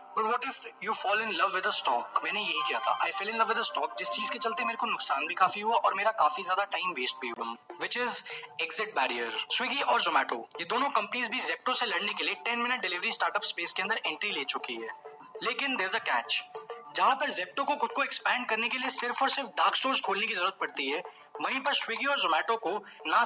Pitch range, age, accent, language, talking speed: 200-255 Hz, 20-39, Indian, English, 150 wpm